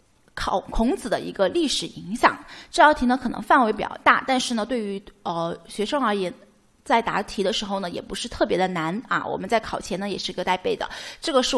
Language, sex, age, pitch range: Chinese, female, 20-39, 200-270 Hz